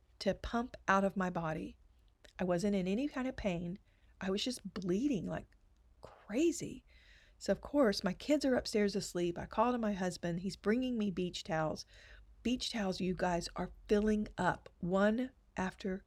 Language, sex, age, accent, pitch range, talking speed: English, female, 40-59, American, 175-215 Hz, 170 wpm